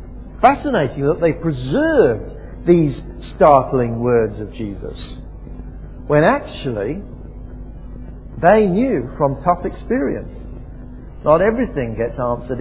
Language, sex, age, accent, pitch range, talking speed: English, male, 50-69, British, 130-185 Hz, 95 wpm